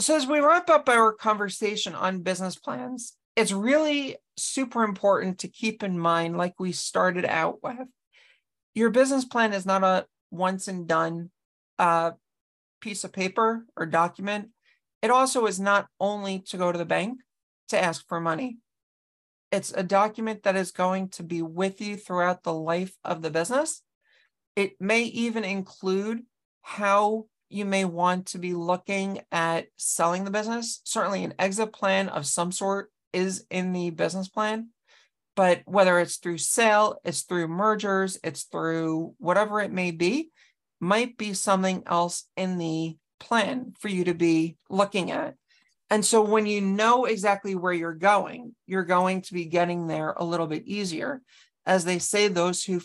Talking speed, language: 165 wpm, English